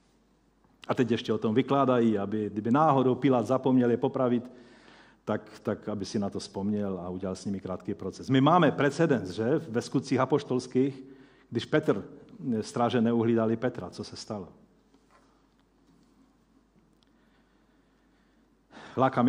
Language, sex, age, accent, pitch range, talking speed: Czech, male, 40-59, native, 110-135 Hz, 130 wpm